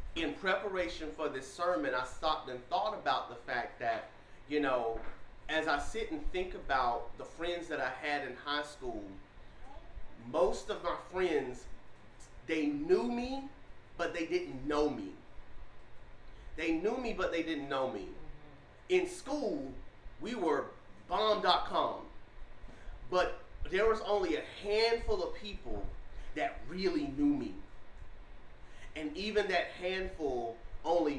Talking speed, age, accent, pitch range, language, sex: 135 wpm, 30-49, American, 140-200 Hz, English, male